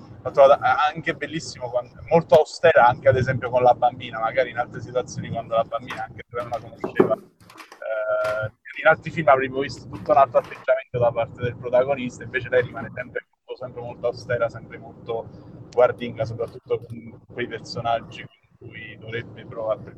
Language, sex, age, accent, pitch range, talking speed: Italian, male, 30-49, native, 115-150 Hz, 160 wpm